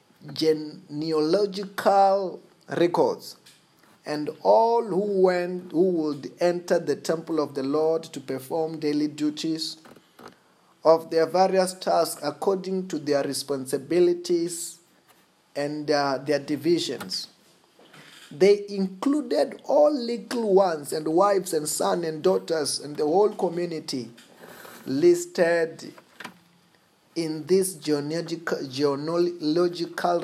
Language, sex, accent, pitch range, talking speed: English, male, South African, 150-185 Hz, 95 wpm